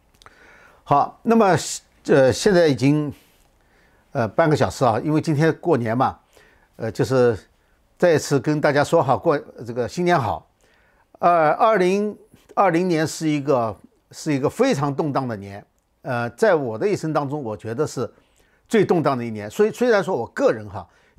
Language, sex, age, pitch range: Chinese, male, 50-69, 120-165 Hz